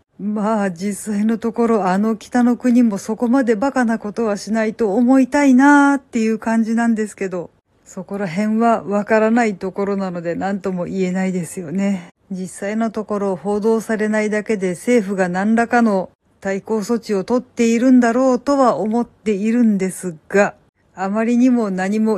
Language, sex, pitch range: Japanese, female, 195-235 Hz